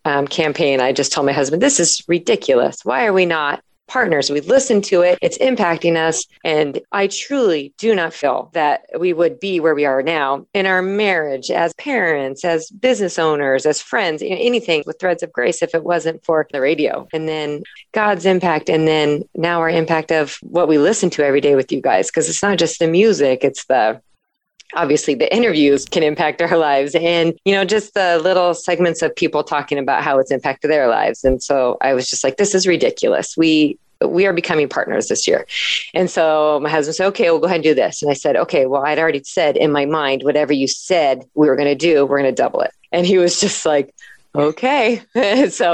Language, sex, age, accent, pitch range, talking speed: English, female, 30-49, American, 145-180 Hz, 215 wpm